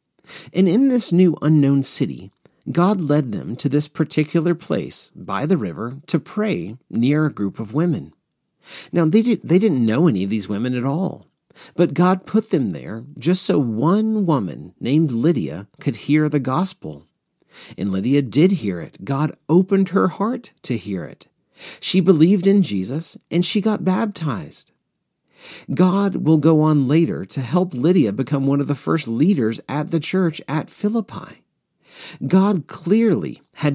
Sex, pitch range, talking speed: male, 140-185 Hz, 165 wpm